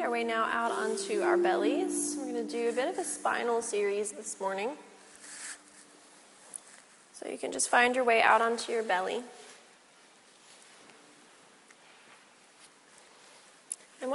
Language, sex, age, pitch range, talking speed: English, female, 30-49, 215-265 Hz, 130 wpm